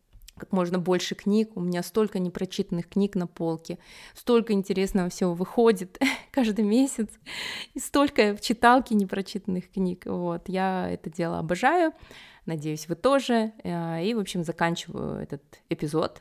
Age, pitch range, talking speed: 20-39, 160-200 Hz, 135 wpm